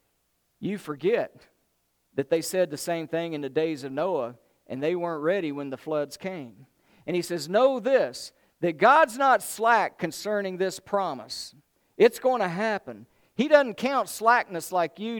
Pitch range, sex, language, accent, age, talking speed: 150-195 Hz, male, English, American, 50-69, 170 wpm